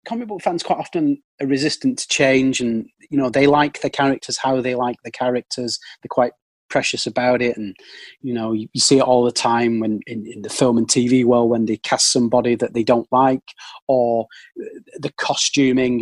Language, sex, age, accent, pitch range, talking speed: English, male, 30-49, British, 120-140 Hz, 200 wpm